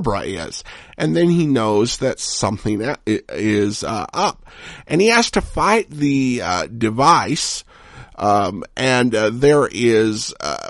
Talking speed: 135 wpm